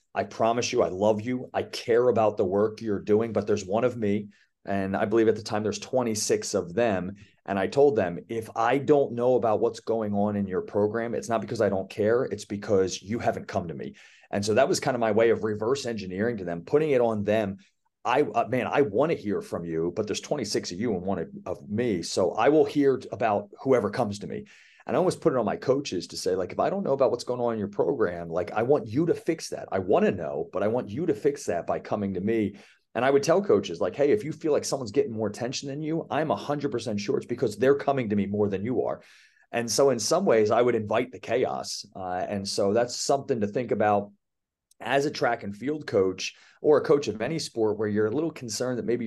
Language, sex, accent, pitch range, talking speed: English, male, American, 105-130 Hz, 260 wpm